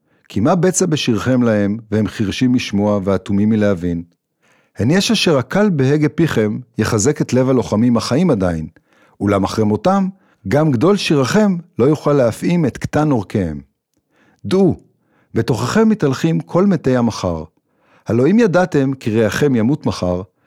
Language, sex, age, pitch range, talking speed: Hebrew, male, 50-69, 105-165 Hz, 140 wpm